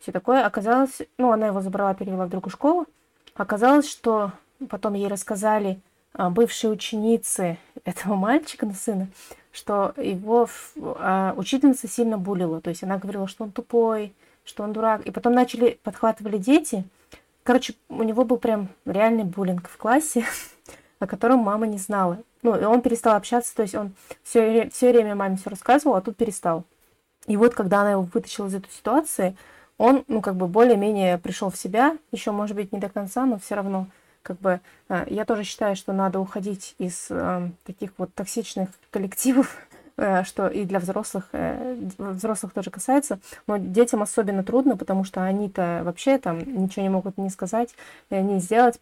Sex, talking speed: female, 175 wpm